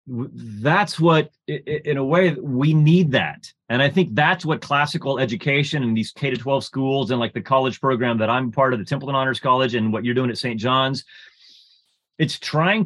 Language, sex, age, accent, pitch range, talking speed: English, male, 30-49, American, 130-170 Hz, 200 wpm